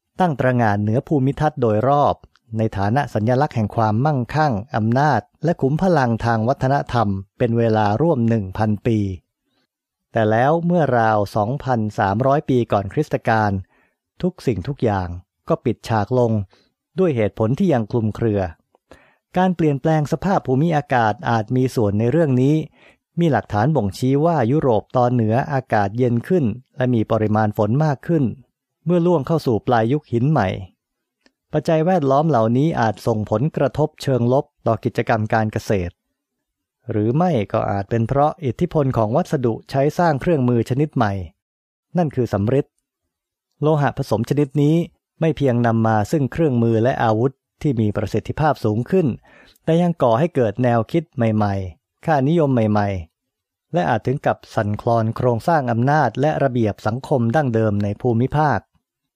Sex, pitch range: male, 110-150 Hz